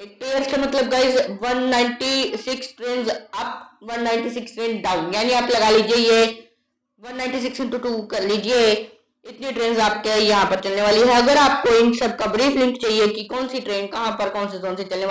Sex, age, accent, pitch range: female, 20-39, native, 215-255 Hz